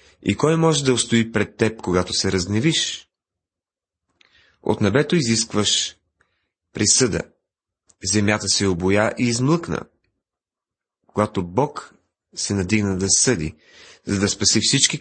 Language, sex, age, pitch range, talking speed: Bulgarian, male, 30-49, 100-140 Hz, 115 wpm